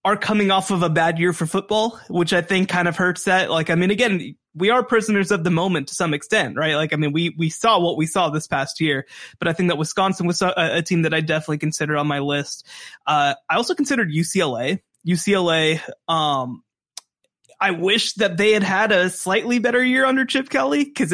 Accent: American